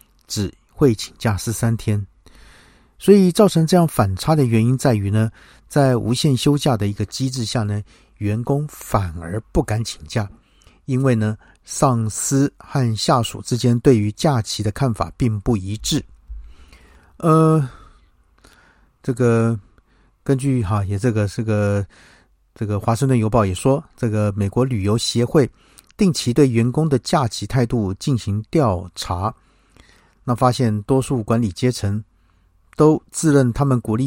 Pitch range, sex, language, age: 105-140 Hz, male, Chinese, 50-69